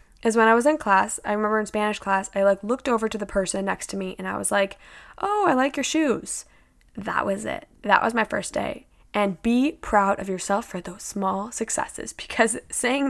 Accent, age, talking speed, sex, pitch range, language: American, 10-29, 225 wpm, female, 200-255 Hz, English